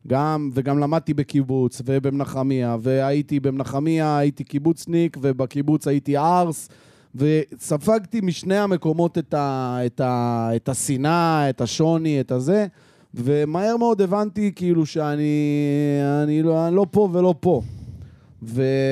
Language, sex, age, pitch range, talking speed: Hebrew, male, 30-49, 135-165 Hz, 110 wpm